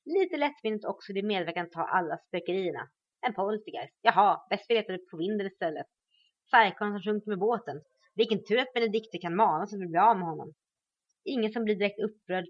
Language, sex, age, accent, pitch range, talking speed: Swedish, female, 30-49, native, 175-240 Hz, 185 wpm